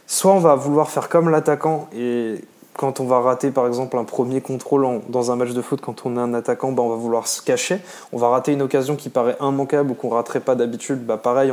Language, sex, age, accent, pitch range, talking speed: French, male, 20-39, French, 125-160 Hz, 245 wpm